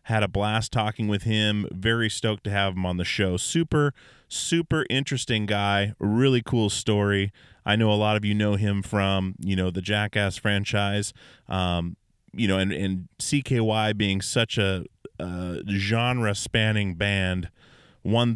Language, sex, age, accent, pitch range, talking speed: English, male, 30-49, American, 95-110 Hz, 160 wpm